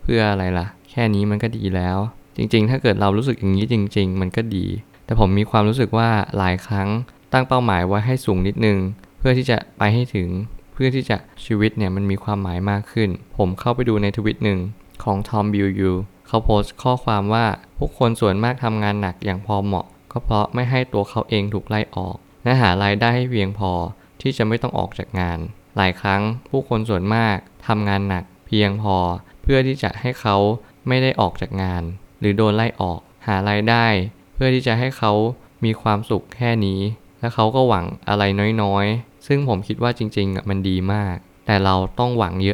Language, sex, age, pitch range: Thai, male, 20-39, 95-115 Hz